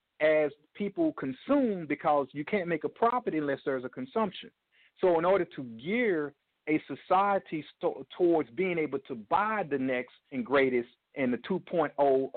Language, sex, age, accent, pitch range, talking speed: English, male, 50-69, American, 135-190 Hz, 155 wpm